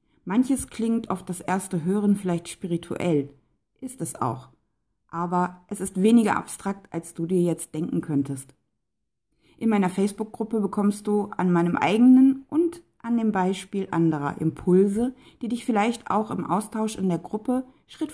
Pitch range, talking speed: 170-220 Hz, 150 wpm